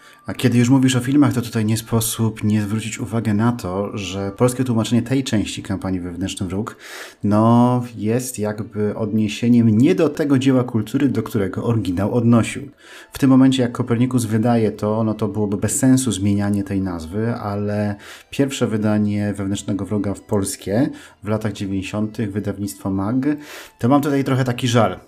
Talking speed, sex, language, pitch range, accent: 165 wpm, male, Polish, 100-125 Hz, native